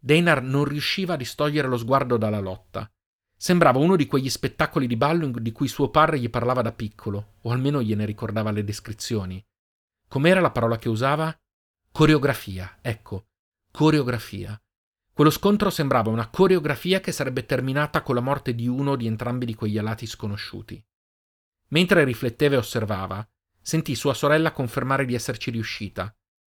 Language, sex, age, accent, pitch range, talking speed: Italian, male, 40-59, native, 110-145 Hz, 155 wpm